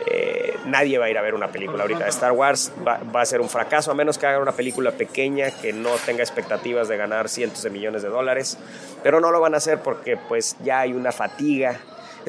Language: English